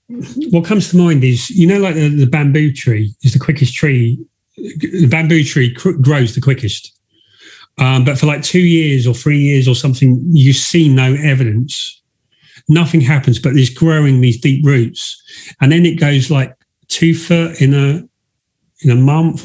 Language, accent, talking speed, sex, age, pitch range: English, British, 175 wpm, male, 40-59, 130-160 Hz